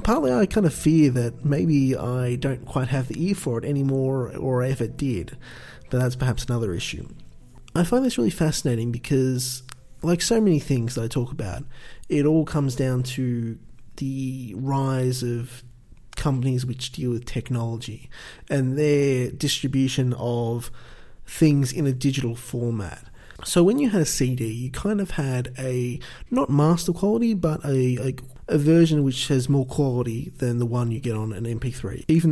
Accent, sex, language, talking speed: Australian, male, English, 175 wpm